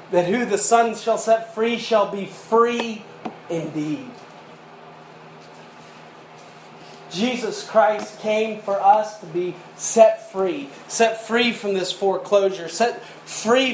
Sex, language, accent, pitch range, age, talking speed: male, English, American, 160-230 Hz, 30-49, 120 wpm